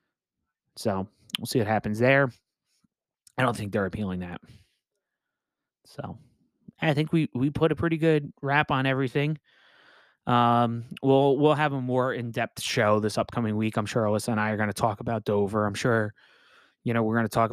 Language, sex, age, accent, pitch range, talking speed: English, male, 20-39, American, 105-135 Hz, 180 wpm